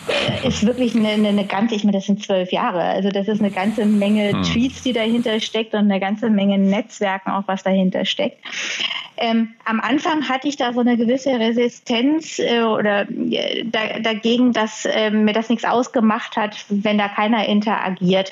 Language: German